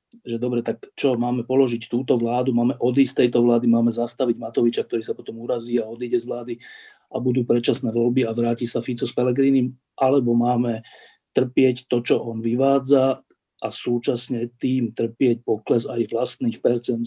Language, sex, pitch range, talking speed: Slovak, male, 115-130 Hz, 170 wpm